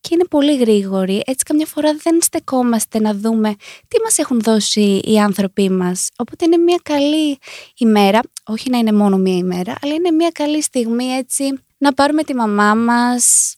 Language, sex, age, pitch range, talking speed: Greek, female, 20-39, 220-275 Hz, 175 wpm